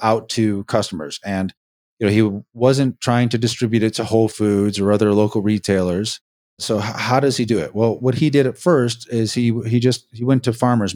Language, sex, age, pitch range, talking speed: English, male, 30-49, 105-130 Hz, 215 wpm